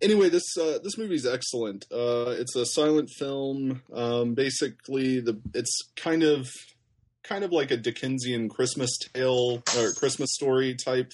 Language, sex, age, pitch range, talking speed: English, male, 20-39, 105-130 Hz, 155 wpm